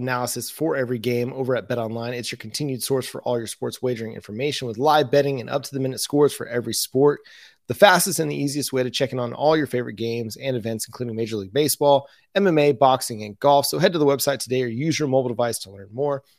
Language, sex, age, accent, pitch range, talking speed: English, male, 30-49, American, 120-145 Hz, 250 wpm